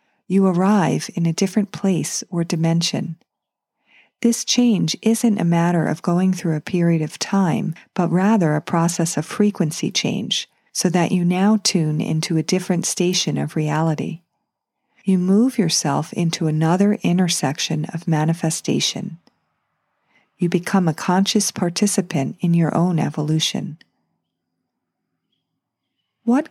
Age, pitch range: 40-59, 160-205 Hz